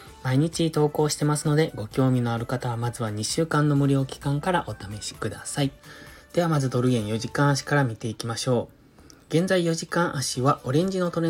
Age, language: 20-39, Japanese